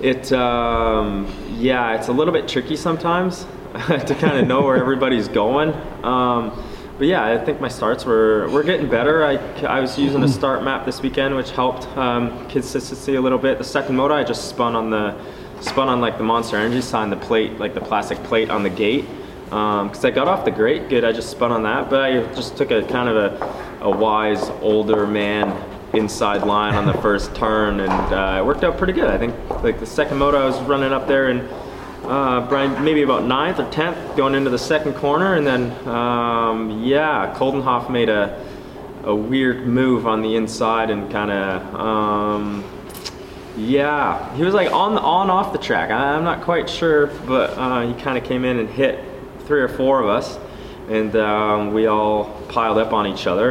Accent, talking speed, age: American, 205 wpm, 20-39